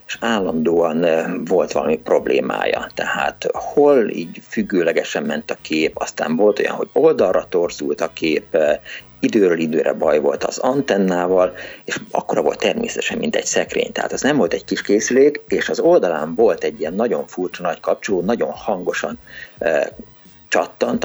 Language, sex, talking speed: Hungarian, male, 150 wpm